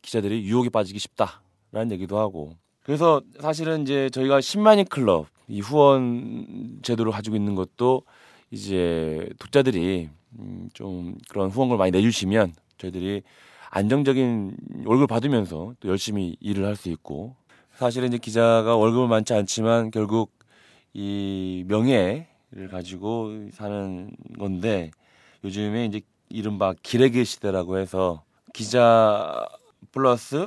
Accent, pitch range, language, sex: native, 95-125 Hz, Korean, male